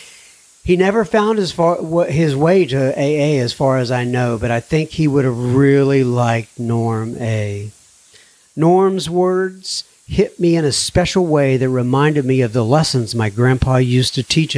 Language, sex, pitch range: English, male, 120-155 Hz